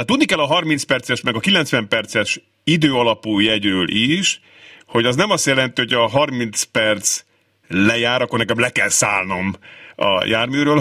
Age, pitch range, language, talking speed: 50-69, 105-145 Hz, Hungarian, 160 wpm